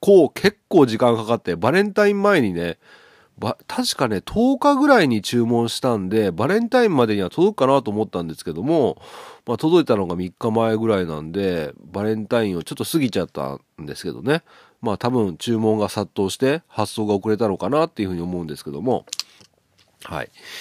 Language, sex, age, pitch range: Japanese, male, 40-59, 100-145 Hz